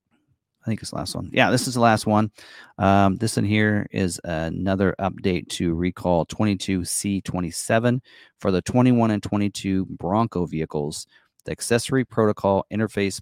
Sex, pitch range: male, 90-110 Hz